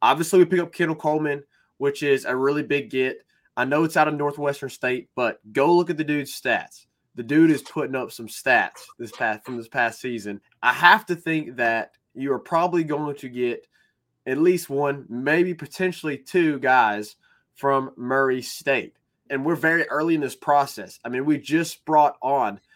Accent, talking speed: American, 190 wpm